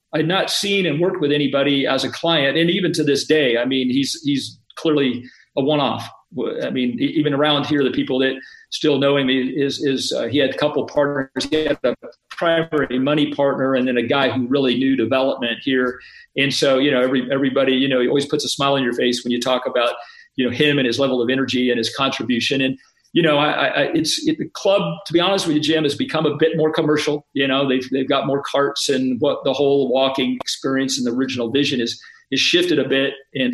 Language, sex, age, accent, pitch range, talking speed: English, male, 50-69, American, 130-155 Hz, 235 wpm